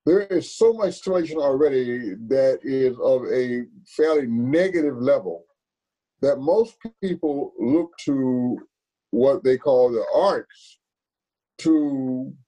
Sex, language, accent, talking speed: male, English, American, 115 wpm